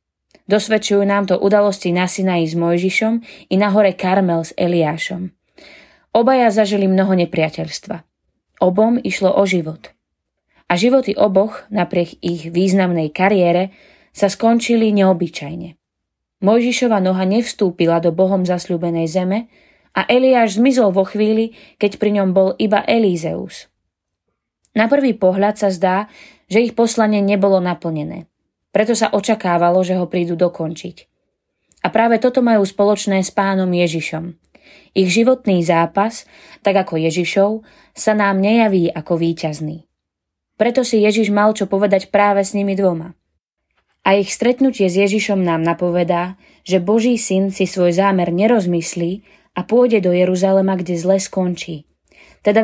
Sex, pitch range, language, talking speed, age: female, 175-210 Hz, Slovak, 135 wpm, 20-39